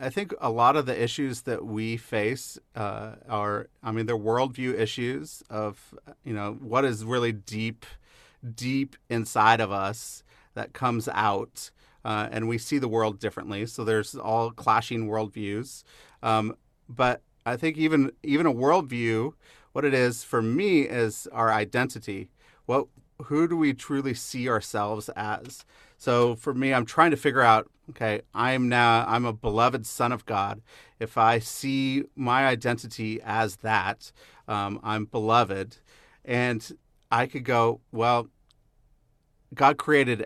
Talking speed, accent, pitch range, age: 150 wpm, American, 110-130 Hz, 40-59